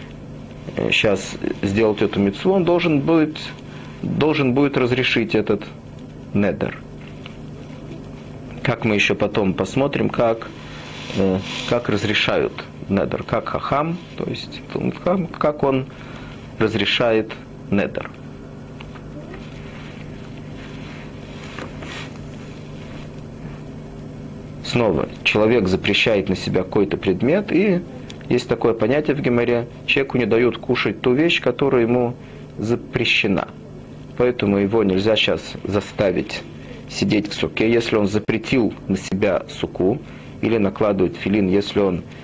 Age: 40-59